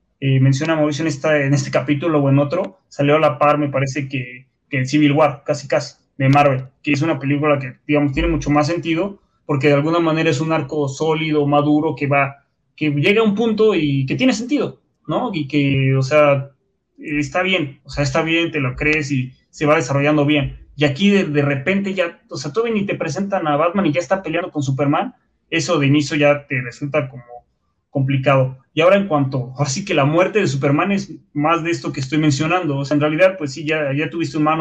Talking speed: 225 wpm